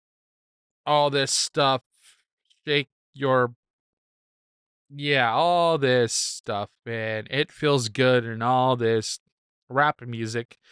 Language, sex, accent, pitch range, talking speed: English, male, American, 115-155 Hz, 100 wpm